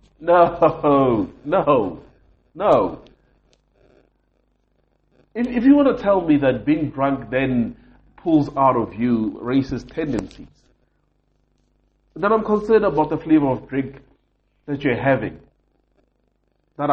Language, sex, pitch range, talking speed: English, male, 115-155 Hz, 115 wpm